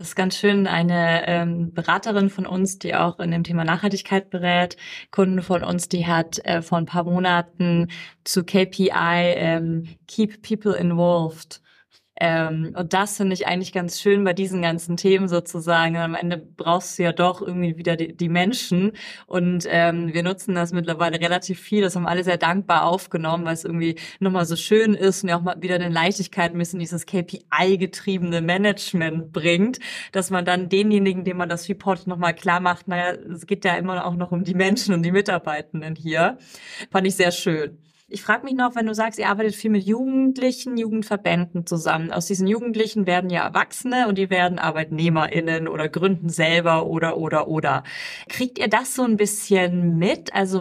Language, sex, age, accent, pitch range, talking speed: German, female, 20-39, German, 170-200 Hz, 185 wpm